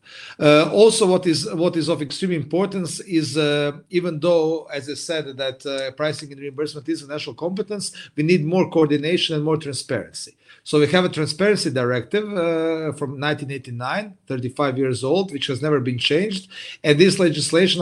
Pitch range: 130-160 Hz